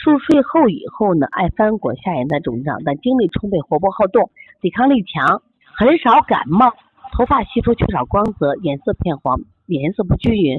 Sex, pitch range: female, 175-270 Hz